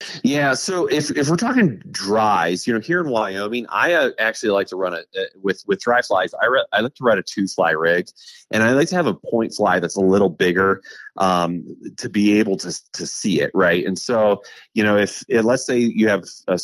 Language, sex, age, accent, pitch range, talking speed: English, male, 30-49, American, 90-115 Hz, 235 wpm